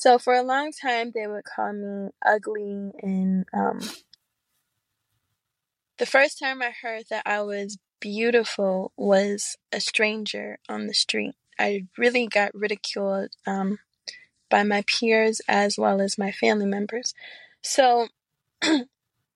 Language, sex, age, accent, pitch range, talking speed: English, female, 20-39, American, 195-225 Hz, 130 wpm